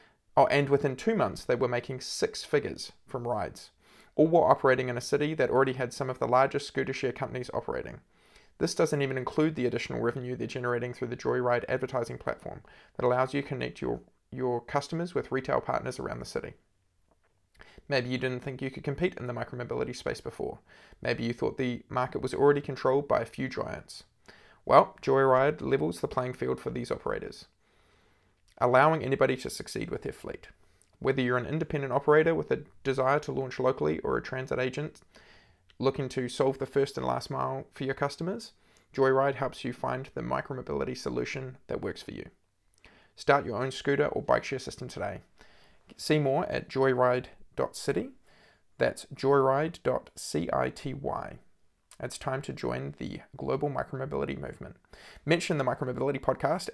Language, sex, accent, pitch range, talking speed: English, male, Australian, 125-140 Hz, 170 wpm